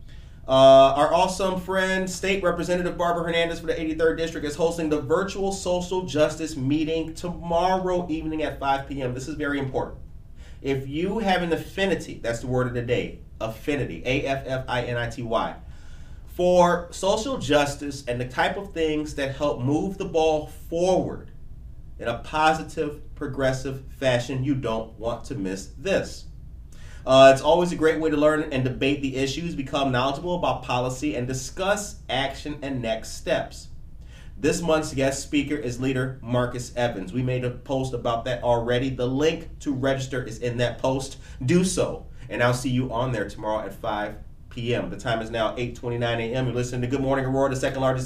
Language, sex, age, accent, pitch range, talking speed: English, male, 30-49, American, 125-160 Hz, 170 wpm